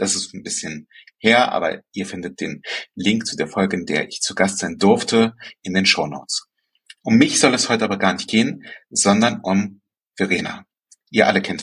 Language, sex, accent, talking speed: German, male, German, 200 wpm